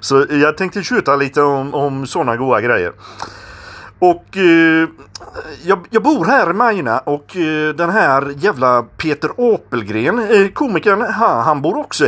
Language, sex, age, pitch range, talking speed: Swedish, male, 40-59, 115-155 Hz, 155 wpm